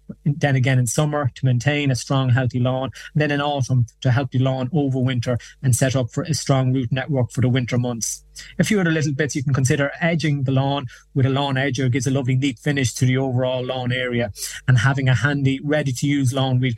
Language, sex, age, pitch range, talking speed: English, male, 30-49, 125-145 Hz, 240 wpm